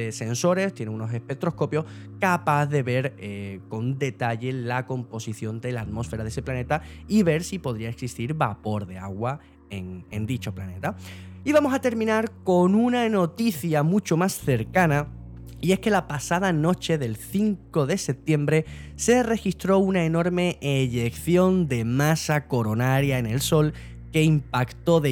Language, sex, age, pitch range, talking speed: Spanish, male, 10-29, 115-165 Hz, 155 wpm